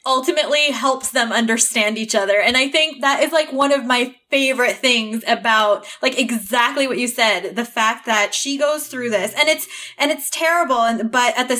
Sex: female